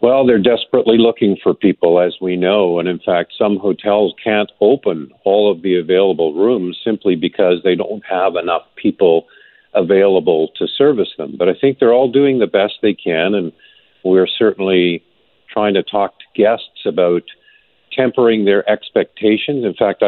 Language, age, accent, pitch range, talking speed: English, 50-69, American, 90-110 Hz, 165 wpm